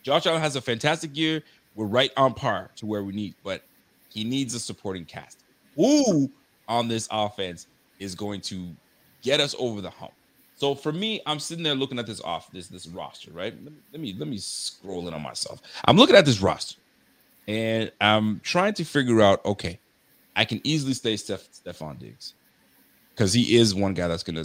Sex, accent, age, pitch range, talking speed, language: male, American, 30-49, 90-135 Hz, 200 wpm, English